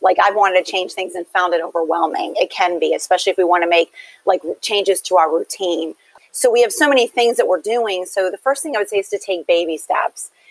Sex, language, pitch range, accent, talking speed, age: female, English, 175-235 Hz, American, 255 wpm, 30-49